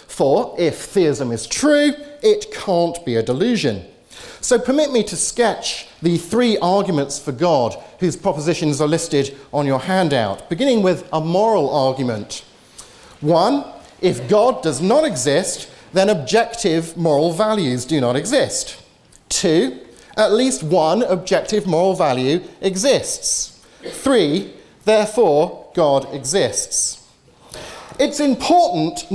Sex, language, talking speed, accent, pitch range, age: male, English, 120 wpm, British, 155-235 Hz, 40-59